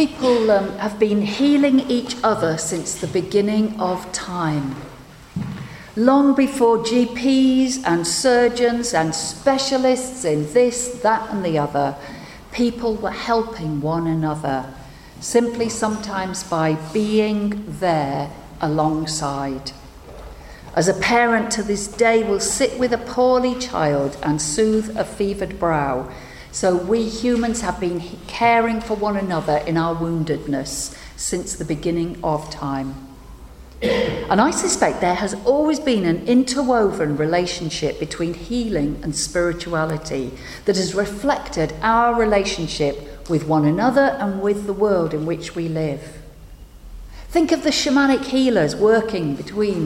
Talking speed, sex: 130 wpm, female